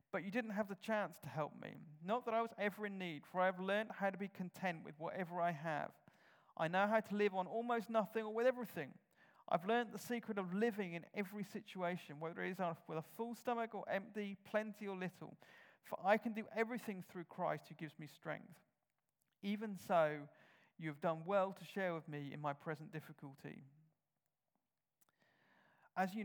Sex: male